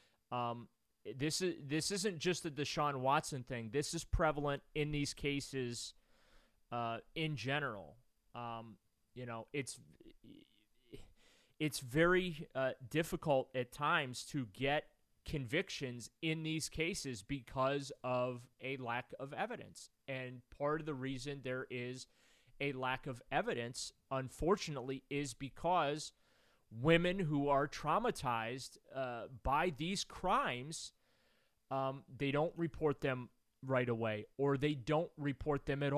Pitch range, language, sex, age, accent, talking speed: 125-150 Hz, English, male, 30-49, American, 125 wpm